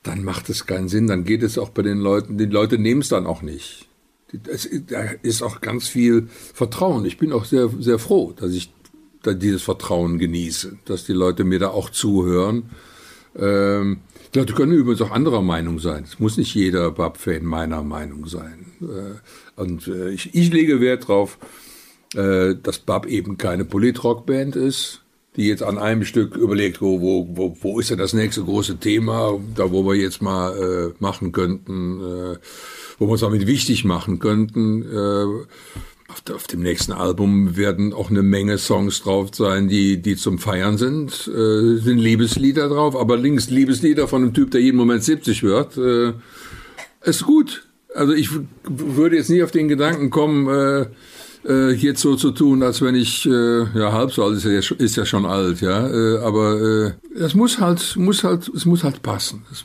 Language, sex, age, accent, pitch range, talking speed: German, male, 60-79, German, 95-130 Hz, 180 wpm